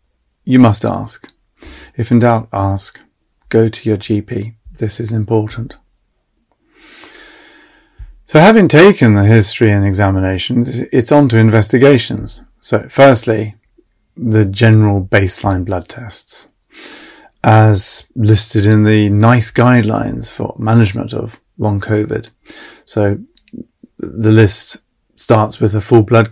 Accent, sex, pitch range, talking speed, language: British, male, 110-120 Hz, 115 wpm, English